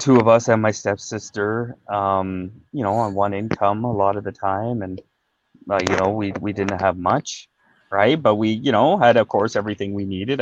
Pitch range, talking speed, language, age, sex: 100-135 Hz, 215 wpm, English, 20-39, male